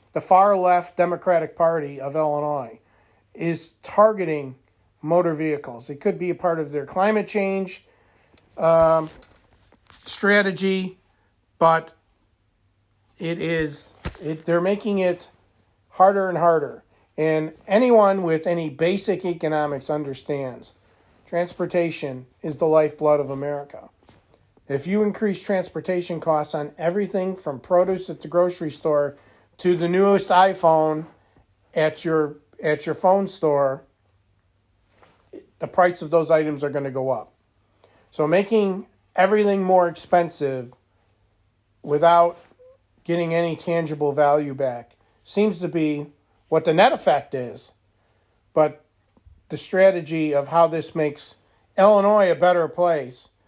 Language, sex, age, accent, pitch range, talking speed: English, male, 50-69, American, 130-175 Hz, 120 wpm